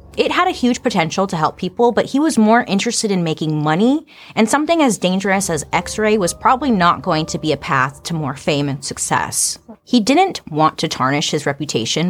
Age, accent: 30-49, American